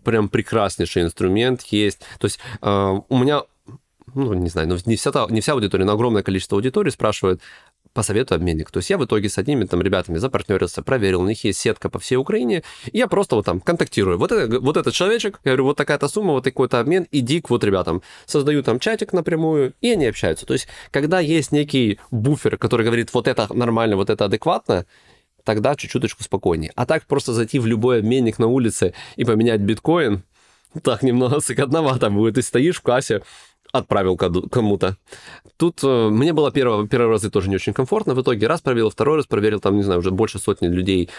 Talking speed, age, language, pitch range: 205 wpm, 20-39, Russian, 100-135 Hz